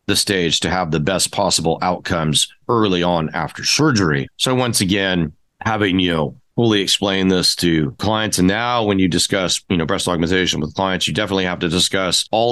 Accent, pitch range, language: American, 85-100 Hz, English